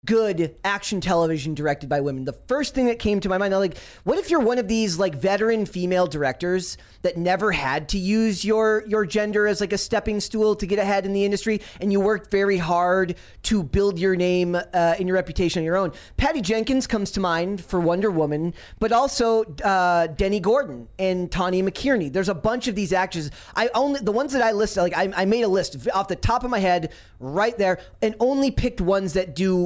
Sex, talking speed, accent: male, 225 wpm, American